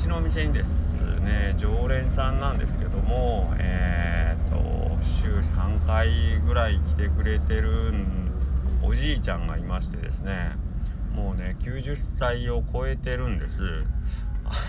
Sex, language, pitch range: male, Japanese, 75-95 Hz